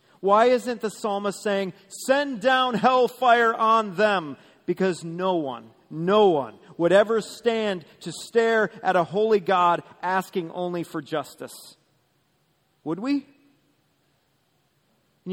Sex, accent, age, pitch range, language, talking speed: male, American, 40-59, 185-235 Hz, English, 120 wpm